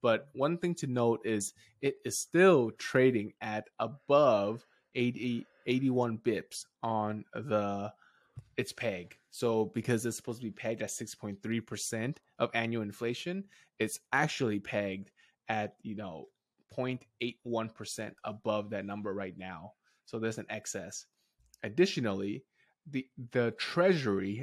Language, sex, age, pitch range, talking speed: English, male, 20-39, 105-120 Hz, 125 wpm